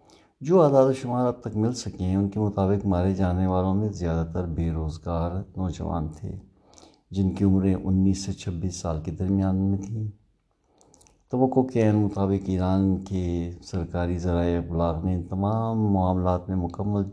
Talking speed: 165 wpm